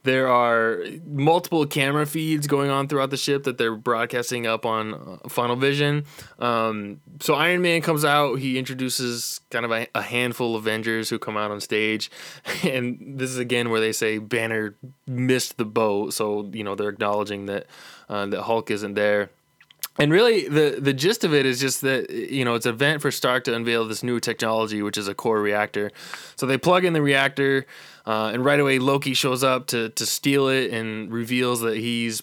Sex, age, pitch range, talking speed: male, 20-39, 110-135 Hz, 200 wpm